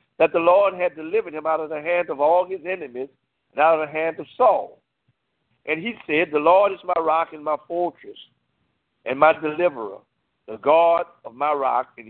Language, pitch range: English, 145-195 Hz